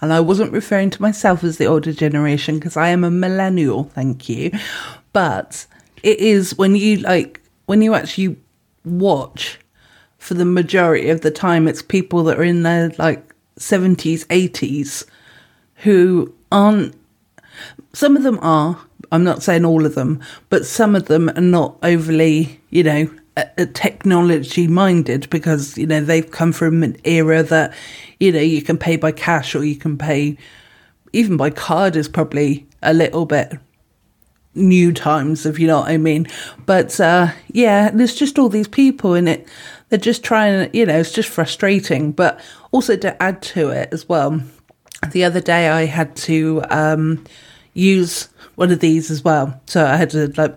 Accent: British